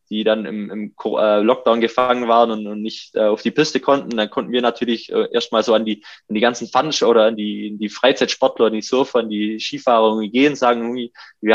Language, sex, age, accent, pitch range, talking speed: German, male, 20-39, German, 110-120 Hz, 220 wpm